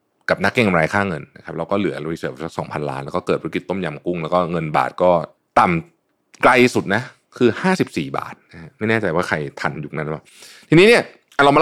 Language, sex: Thai, male